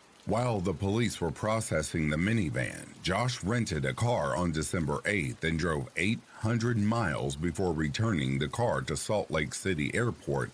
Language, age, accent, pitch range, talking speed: English, 50-69, American, 75-105 Hz, 155 wpm